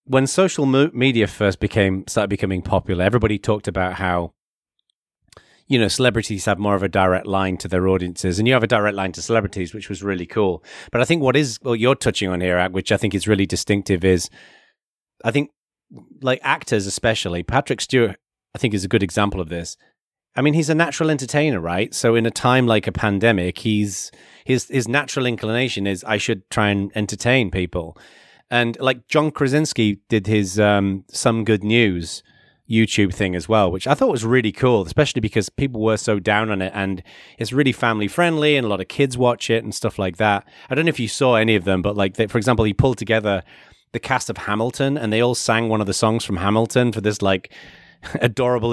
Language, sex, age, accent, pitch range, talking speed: English, male, 30-49, British, 100-130 Hz, 215 wpm